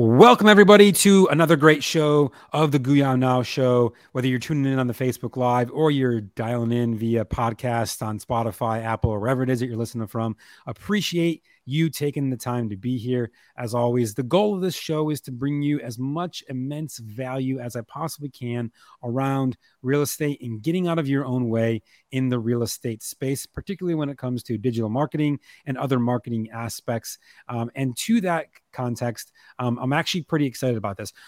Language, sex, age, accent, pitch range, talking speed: English, male, 30-49, American, 115-145 Hz, 195 wpm